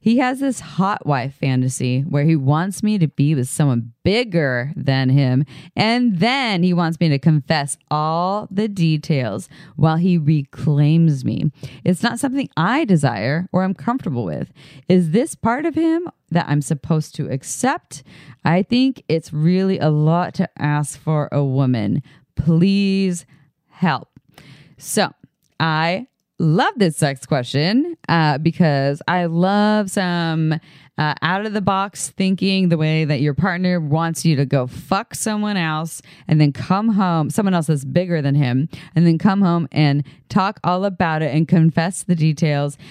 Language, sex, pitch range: English, female, 145-190 Hz